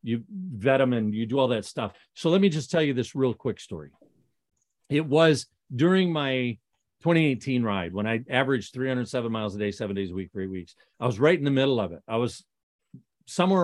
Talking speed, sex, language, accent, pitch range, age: 215 wpm, male, English, American, 115-155 Hz, 40-59